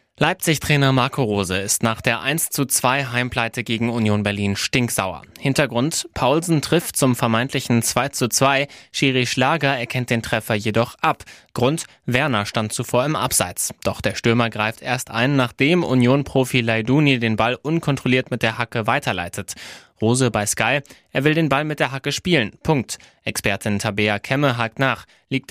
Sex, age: male, 20-39